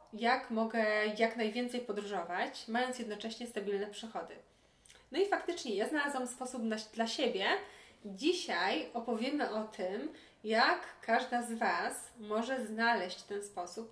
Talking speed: 125 wpm